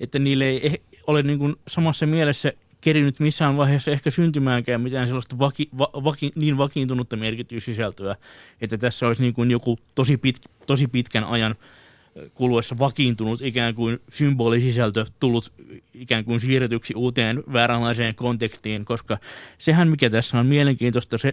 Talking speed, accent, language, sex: 120 wpm, native, Finnish, male